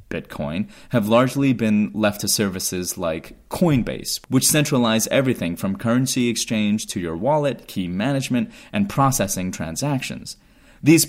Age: 30-49